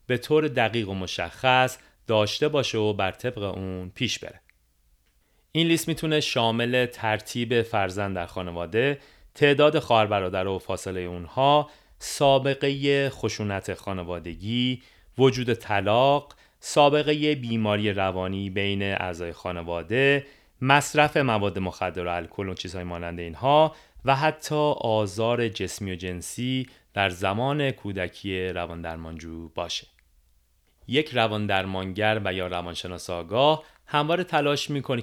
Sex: male